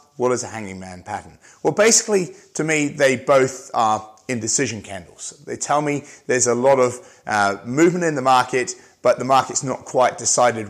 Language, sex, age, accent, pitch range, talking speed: English, male, 30-49, British, 115-150 Hz, 185 wpm